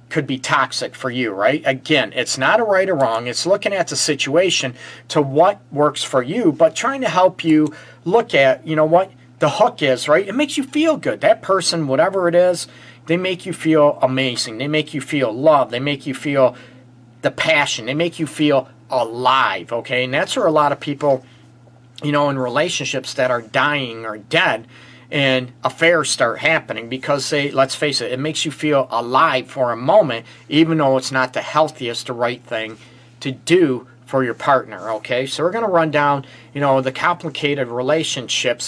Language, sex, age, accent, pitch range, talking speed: English, male, 40-59, American, 125-160 Hz, 195 wpm